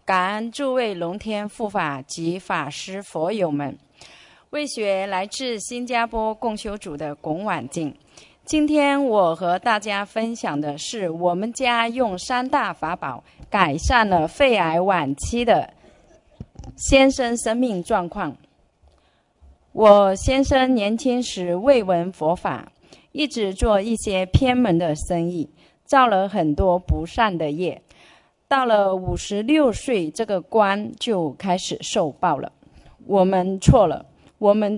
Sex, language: female, Chinese